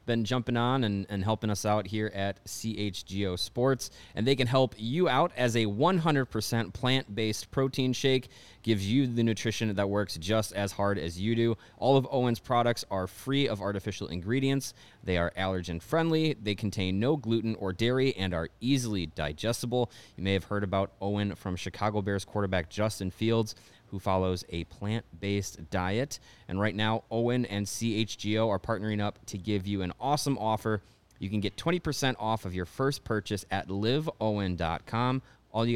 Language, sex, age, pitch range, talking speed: English, male, 30-49, 95-120 Hz, 175 wpm